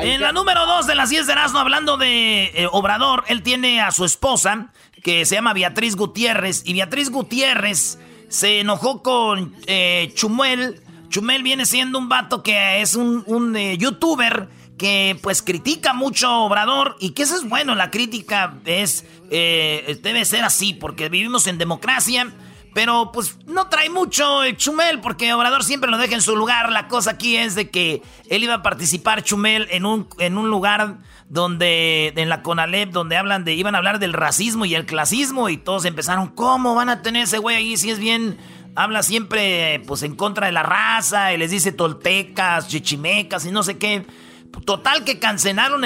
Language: Spanish